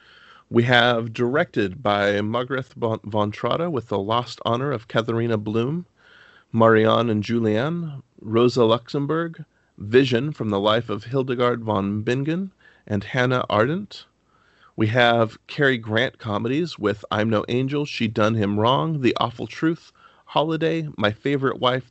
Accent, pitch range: American, 110-140 Hz